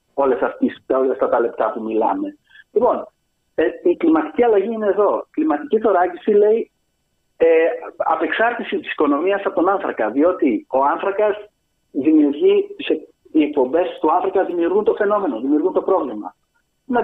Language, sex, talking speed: Greek, male, 140 wpm